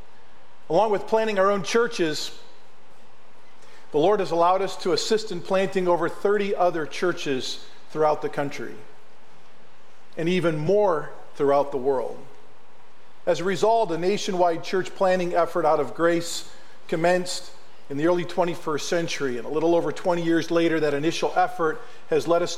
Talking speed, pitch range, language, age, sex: 155 wpm, 150-190 Hz, English, 40-59, male